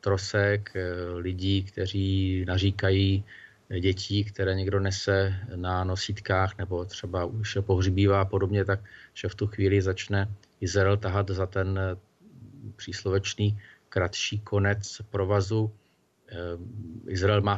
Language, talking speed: Czech, 110 wpm